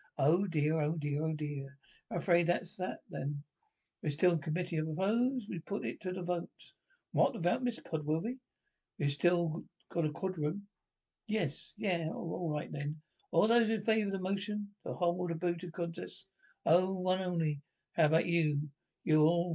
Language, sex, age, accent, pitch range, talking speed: English, male, 60-79, British, 155-190 Hz, 195 wpm